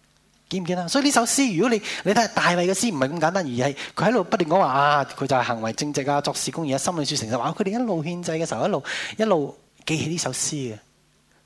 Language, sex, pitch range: Chinese, male, 120-165 Hz